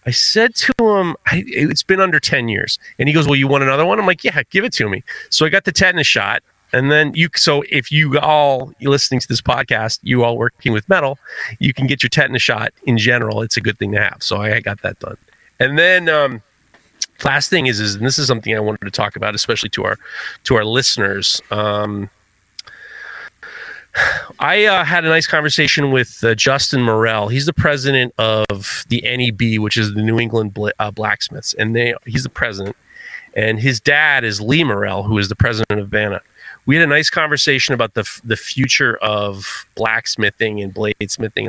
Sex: male